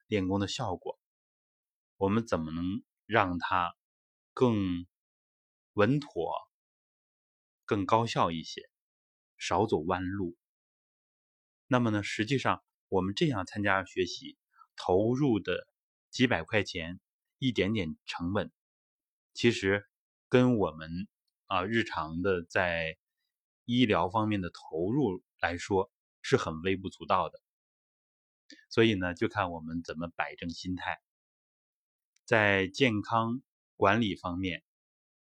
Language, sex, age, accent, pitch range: Chinese, male, 20-39, native, 85-115 Hz